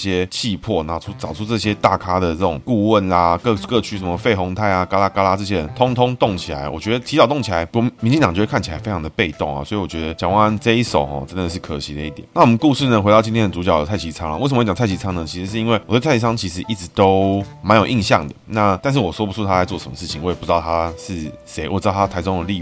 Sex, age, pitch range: male, 20-39, 85-110 Hz